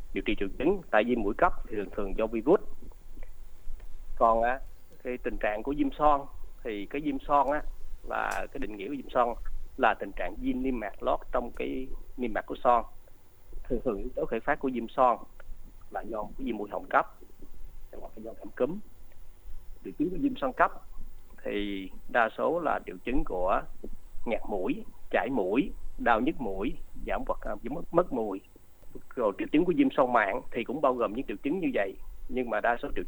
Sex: male